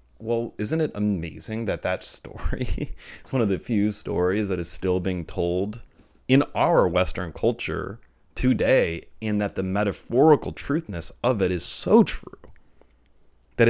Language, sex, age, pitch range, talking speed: English, male, 30-49, 90-115 Hz, 150 wpm